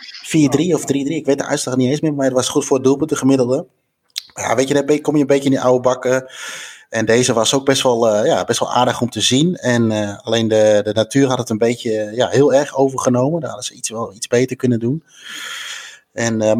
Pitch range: 110-130 Hz